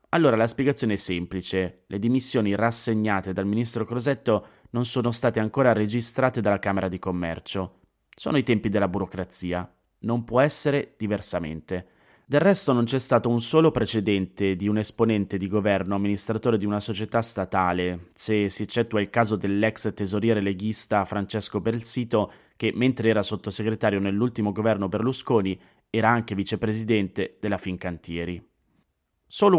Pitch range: 100-115 Hz